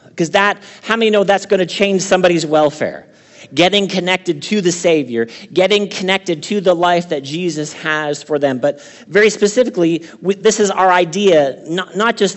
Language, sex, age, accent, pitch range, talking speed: English, male, 40-59, American, 160-200 Hz, 180 wpm